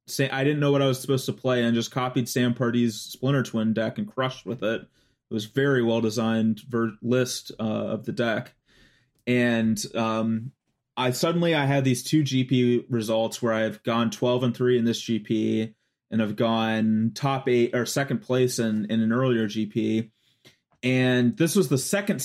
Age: 30-49